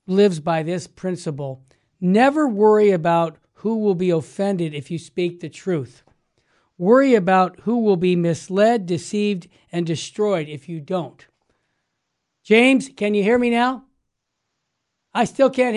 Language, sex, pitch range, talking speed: English, male, 160-195 Hz, 140 wpm